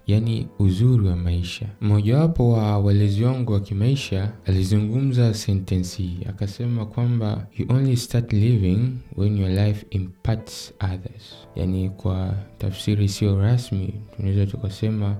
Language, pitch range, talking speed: Swahili, 100-120 Hz, 120 wpm